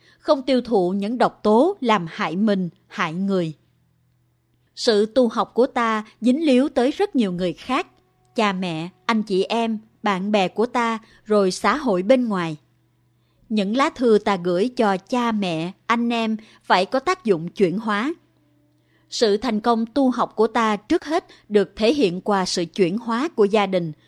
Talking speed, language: 180 wpm, Vietnamese